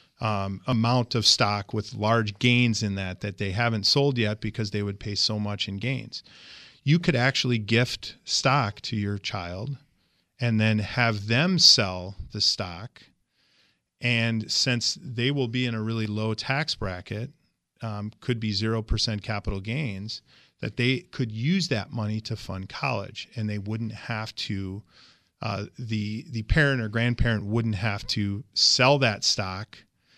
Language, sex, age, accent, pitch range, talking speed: English, male, 40-59, American, 105-125 Hz, 160 wpm